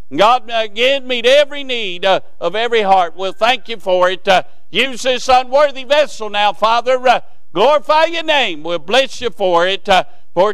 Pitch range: 220-300 Hz